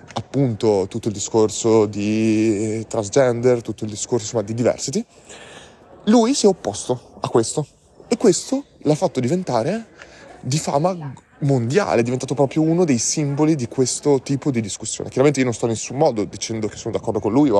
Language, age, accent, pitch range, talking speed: Italian, 20-39, native, 115-160 Hz, 170 wpm